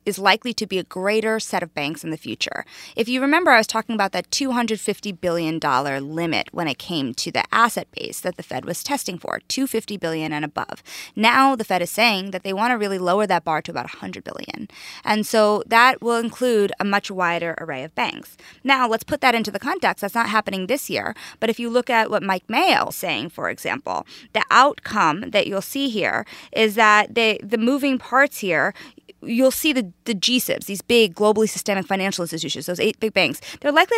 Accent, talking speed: American, 215 wpm